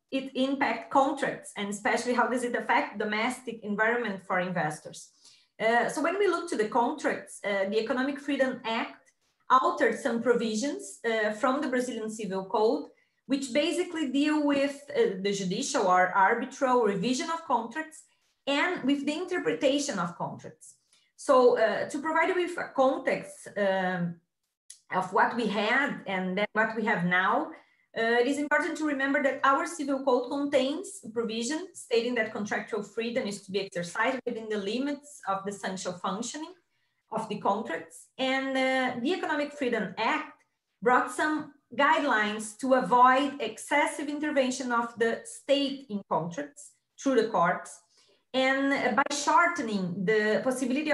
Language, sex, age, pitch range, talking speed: Portuguese, female, 20-39, 220-285 Hz, 150 wpm